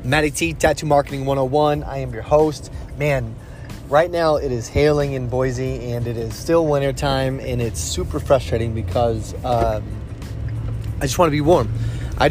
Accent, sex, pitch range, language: American, male, 120-145 Hz, English